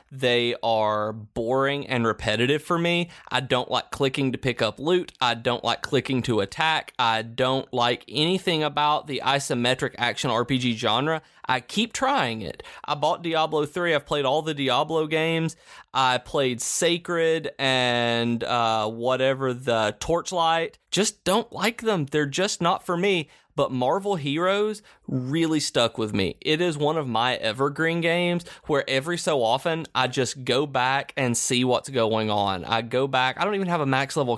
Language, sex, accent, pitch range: English, male, American, 125-160 Hz